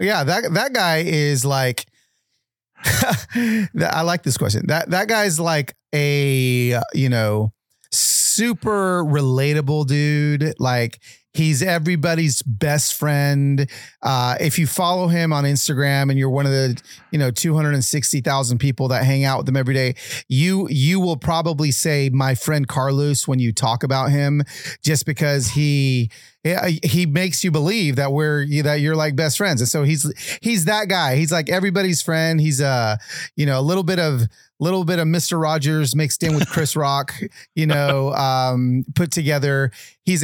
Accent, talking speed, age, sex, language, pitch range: American, 165 wpm, 30-49, male, English, 135-165 Hz